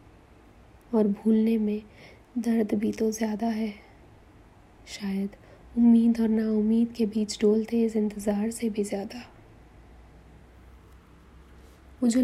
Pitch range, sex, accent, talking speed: 200-230 Hz, female, native, 110 wpm